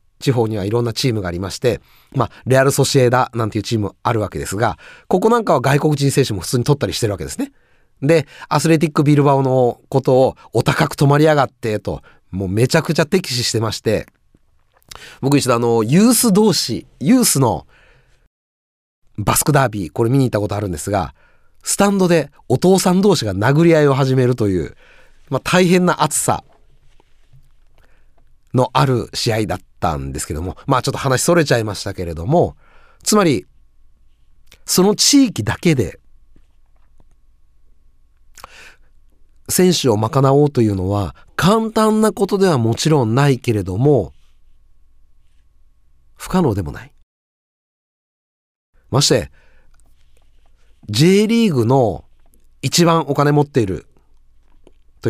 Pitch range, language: 95-155 Hz, Japanese